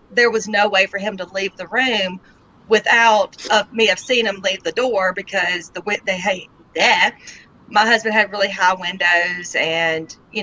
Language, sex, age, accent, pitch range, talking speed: English, female, 40-59, American, 190-230 Hz, 195 wpm